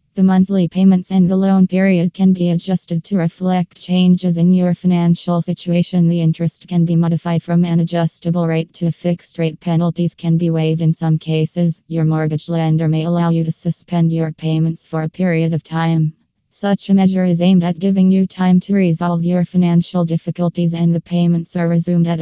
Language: English